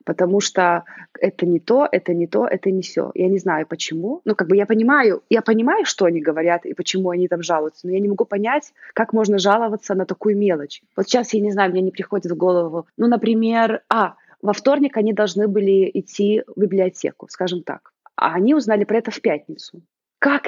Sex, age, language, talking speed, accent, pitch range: female, 20-39, Russian, 210 wpm, native, 180-225 Hz